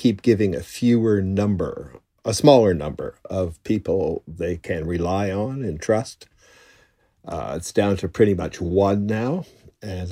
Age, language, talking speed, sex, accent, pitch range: 60-79, English, 150 wpm, male, American, 95-110 Hz